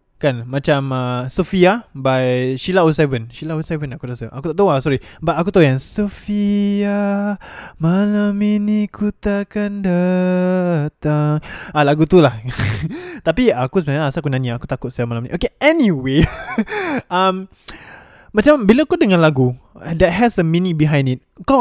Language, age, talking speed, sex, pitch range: Malay, 20-39, 155 wpm, male, 145-200 Hz